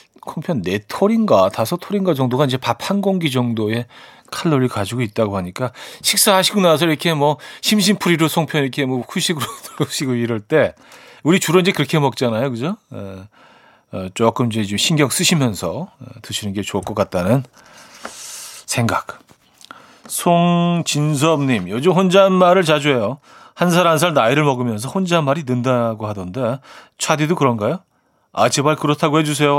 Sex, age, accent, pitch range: male, 40-59, native, 115-165 Hz